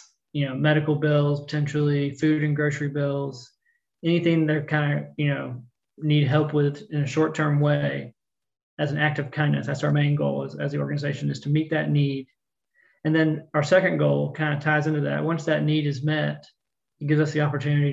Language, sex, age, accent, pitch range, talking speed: English, male, 30-49, American, 140-150 Hz, 205 wpm